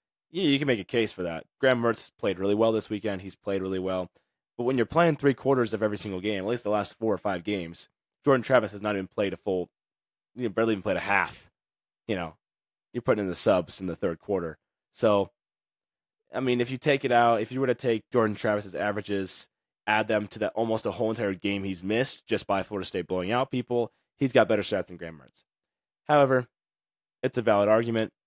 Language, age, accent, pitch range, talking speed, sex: English, 20-39, American, 90-115 Hz, 230 wpm, male